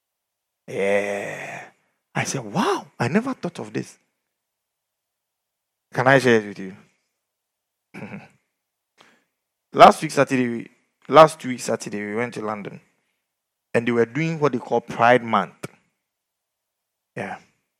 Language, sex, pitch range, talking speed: English, male, 115-175 Hz, 120 wpm